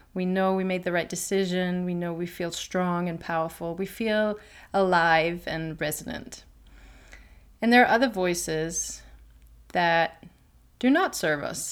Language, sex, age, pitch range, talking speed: English, female, 30-49, 170-205 Hz, 150 wpm